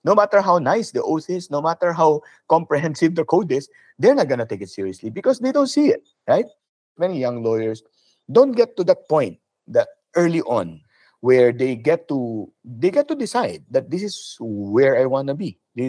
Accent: native